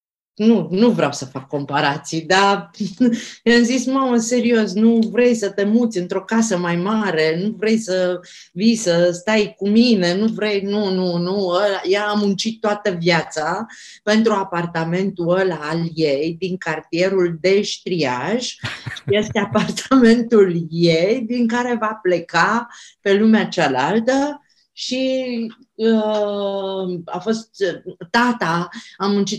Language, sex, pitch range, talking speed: Romanian, female, 160-210 Hz, 130 wpm